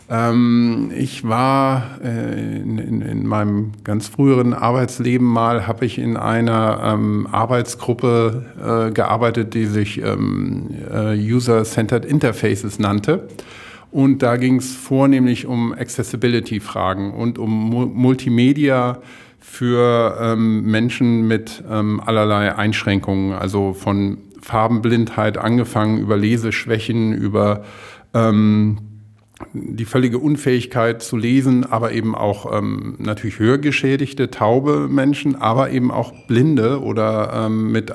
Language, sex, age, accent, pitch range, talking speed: German, male, 50-69, German, 105-125 Hz, 110 wpm